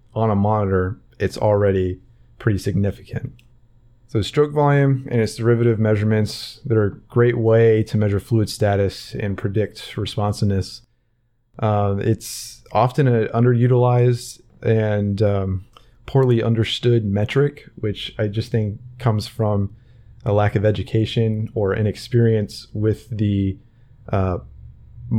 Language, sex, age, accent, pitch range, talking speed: English, male, 20-39, American, 100-120 Hz, 120 wpm